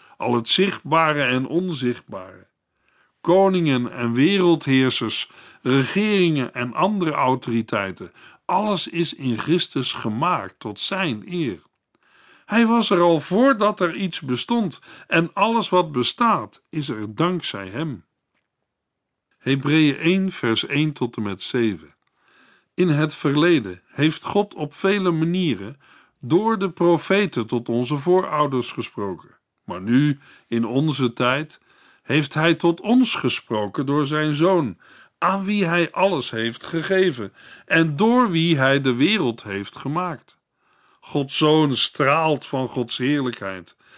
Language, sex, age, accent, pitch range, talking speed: Dutch, male, 50-69, Dutch, 130-180 Hz, 125 wpm